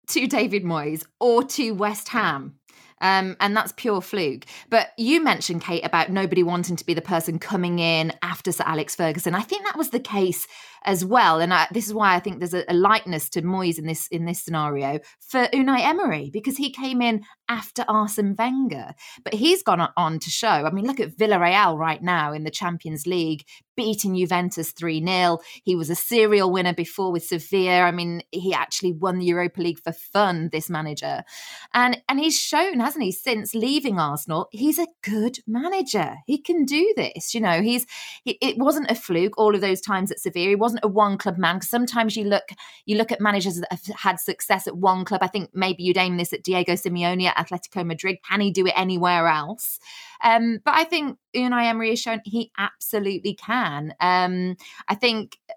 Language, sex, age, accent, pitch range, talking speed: English, female, 20-39, British, 170-225 Hz, 205 wpm